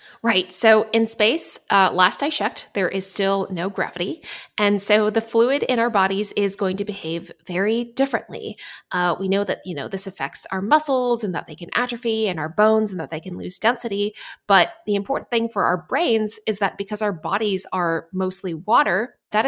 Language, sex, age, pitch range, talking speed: English, female, 20-39, 185-220 Hz, 205 wpm